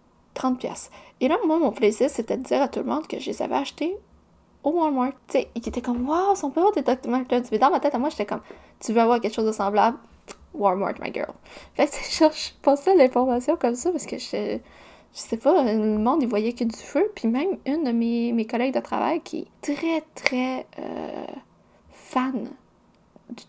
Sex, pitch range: female, 225-290 Hz